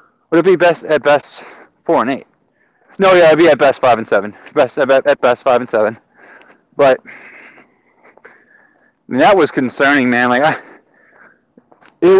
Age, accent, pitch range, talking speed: 20-39, American, 145-195 Hz, 165 wpm